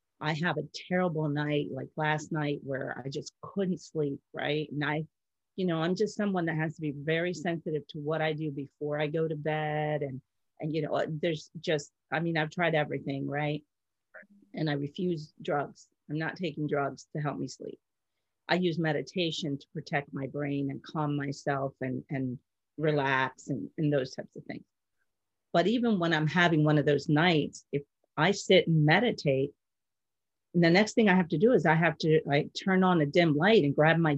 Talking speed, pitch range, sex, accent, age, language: 200 wpm, 145-175 Hz, female, American, 40-59, English